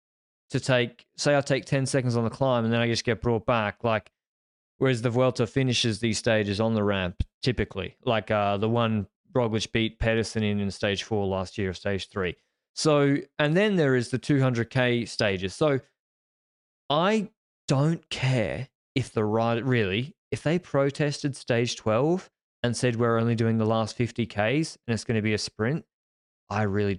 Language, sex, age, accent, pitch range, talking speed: English, male, 20-39, Australian, 110-140 Hz, 185 wpm